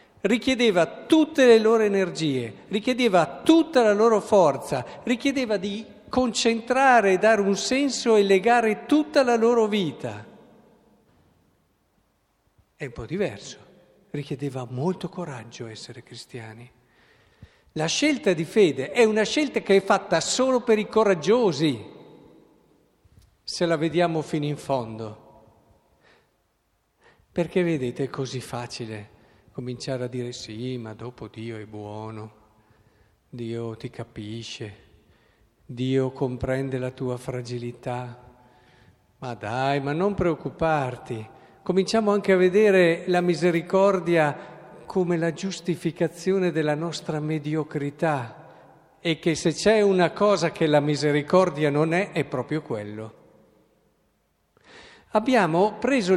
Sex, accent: male, native